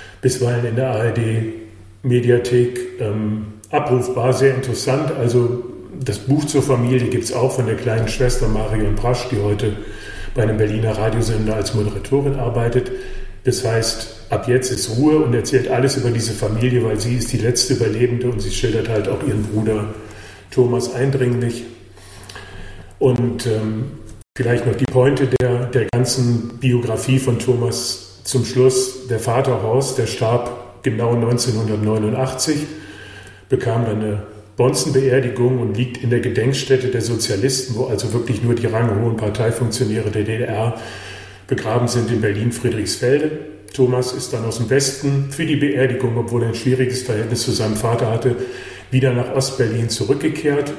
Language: German